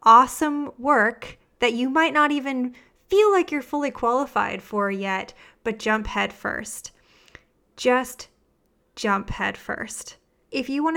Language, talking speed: English, 135 wpm